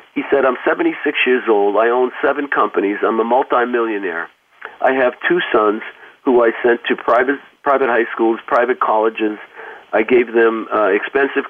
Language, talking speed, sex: English, 165 wpm, male